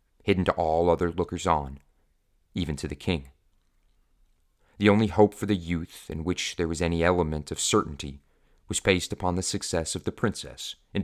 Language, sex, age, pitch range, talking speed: English, male, 30-49, 75-90 Hz, 180 wpm